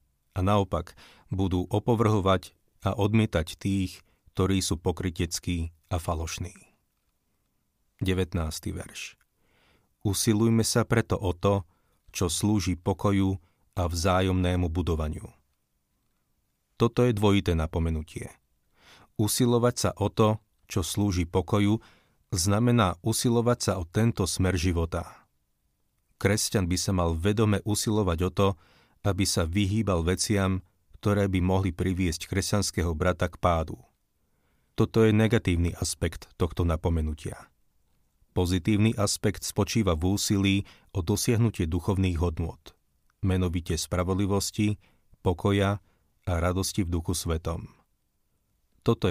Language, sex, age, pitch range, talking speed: Slovak, male, 40-59, 85-105 Hz, 105 wpm